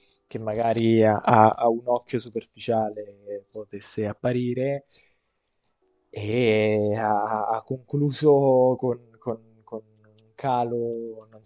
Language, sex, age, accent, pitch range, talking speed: Italian, male, 20-39, native, 105-125 Hz, 105 wpm